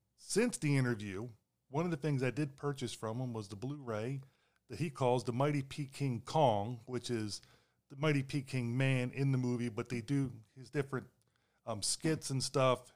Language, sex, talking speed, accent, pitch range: English, male, 195 wpm, American, 115-135 Hz